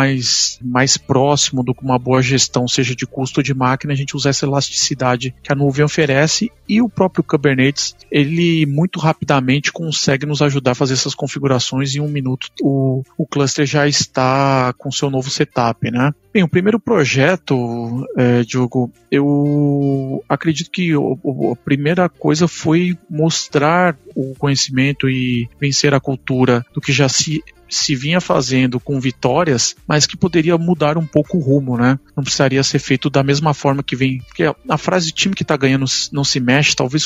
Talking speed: 180 wpm